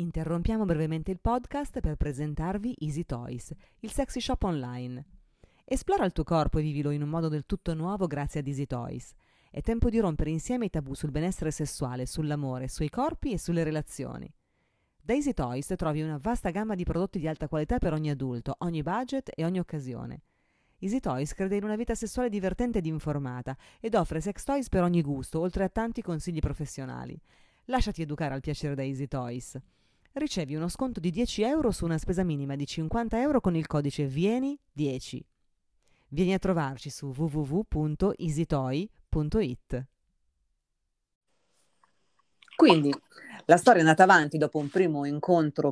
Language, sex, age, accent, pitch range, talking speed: Italian, female, 30-49, native, 145-190 Hz, 165 wpm